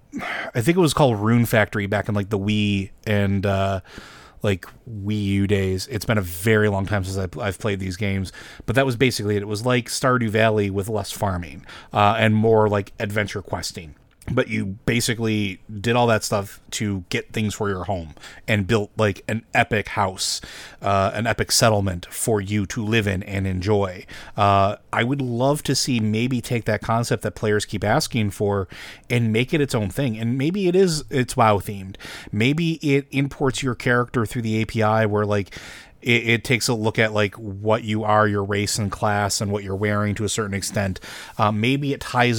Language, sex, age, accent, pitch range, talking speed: English, male, 30-49, American, 105-120 Hz, 200 wpm